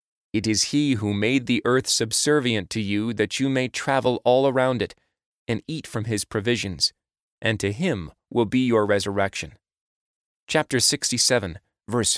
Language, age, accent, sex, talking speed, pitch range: English, 30-49, American, male, 160 wpm, 100-130 Hz